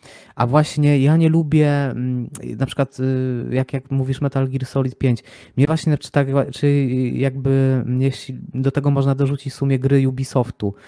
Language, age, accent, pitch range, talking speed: Polish, 20-39, native, 135-160 Hz, 160 wpm